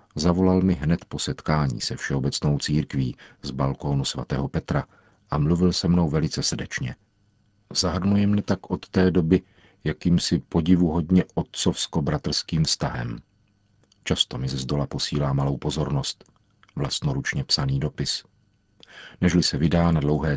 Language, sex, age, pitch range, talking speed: Czech, male, 50-69, 70-95 Hz, 130 wpm